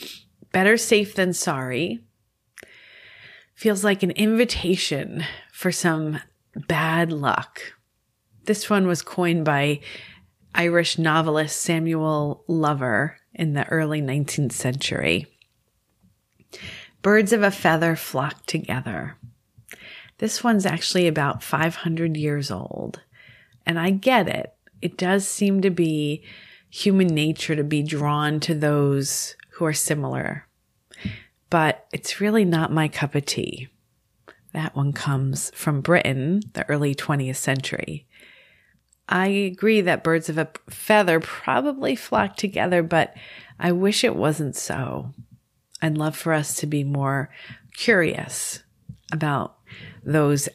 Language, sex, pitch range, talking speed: English, female, 135-175 Hz, 120 wpm